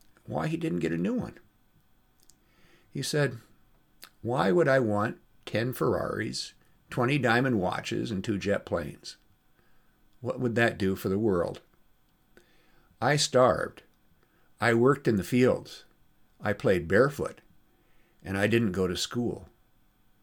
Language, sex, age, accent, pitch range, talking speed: English, male, 50-69, American, 100-130 Hz, 135 wpm